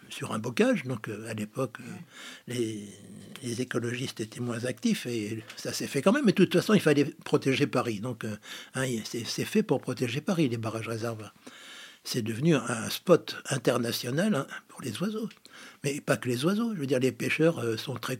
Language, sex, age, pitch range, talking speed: French, male, 60-79, 120-170 Hz, 210 wpm